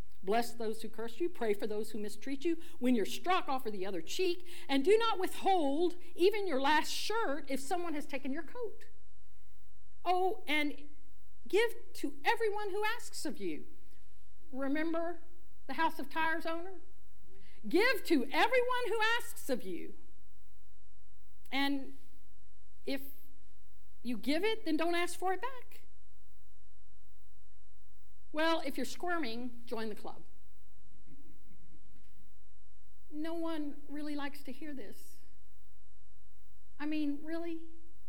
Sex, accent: female, American